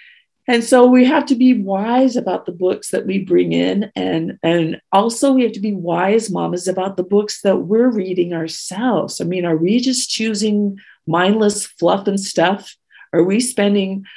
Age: 50-69